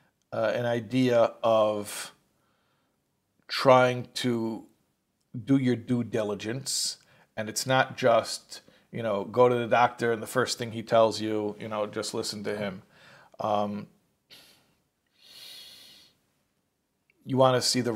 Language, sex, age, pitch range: English, male, 50-69, 110-130 Hz